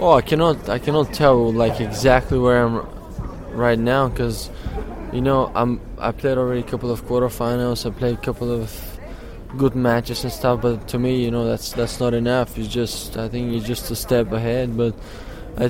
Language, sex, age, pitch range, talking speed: English, male, 20-39, 115-125 Hz, 200 wpm